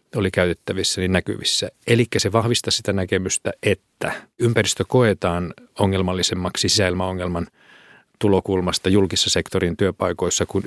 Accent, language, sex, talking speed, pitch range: native, Finnish, male, 105 wpm, 95-105 Hz